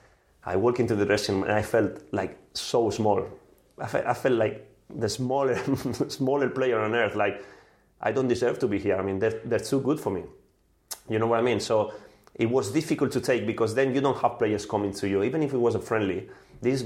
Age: 30-49